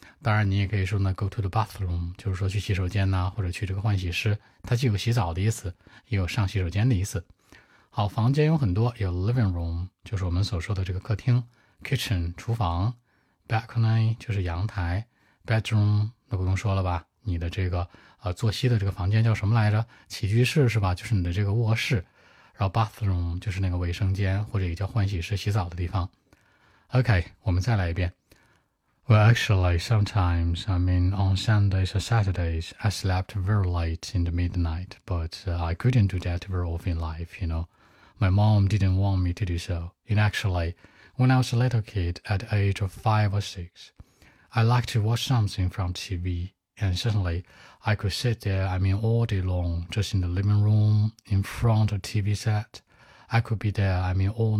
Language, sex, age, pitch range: Chinese, male, 20-39, 90-110 Hz